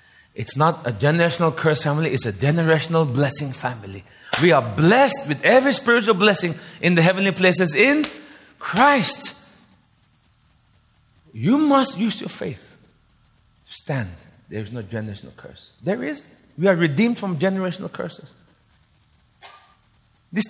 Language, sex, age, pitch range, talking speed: English, male, 30-49, 115-180 Hz, 130 wpm